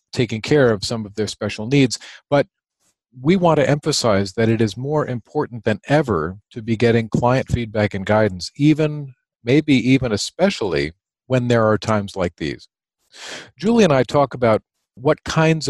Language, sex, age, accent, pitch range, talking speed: English, male, 40-59, American, 110-140 Hz, 170 wpm